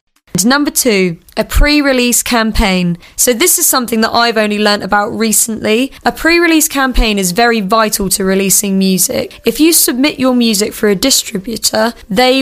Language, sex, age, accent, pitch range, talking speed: English, female, 10-29, British, 210-255 Hz, 160 wpm